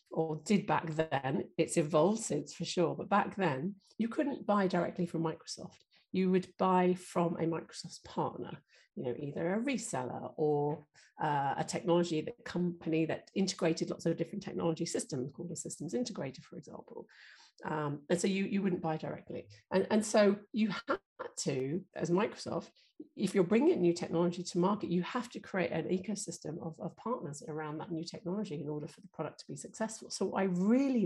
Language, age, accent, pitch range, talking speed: English, 40-59, British, 160-190 Hz, 185 wpm